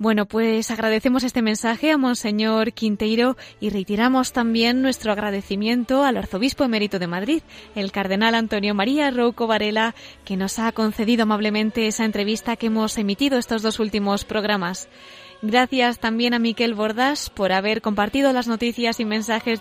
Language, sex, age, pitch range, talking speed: Spanish, female, 20-39, 210-255 Hz, 155 wpm